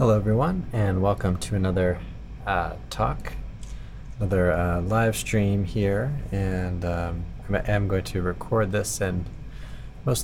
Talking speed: 130 wpm